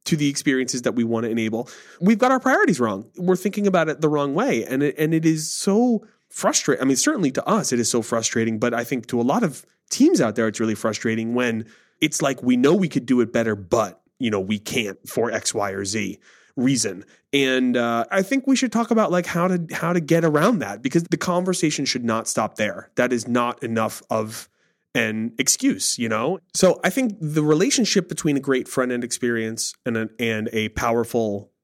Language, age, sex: English, 30-49, male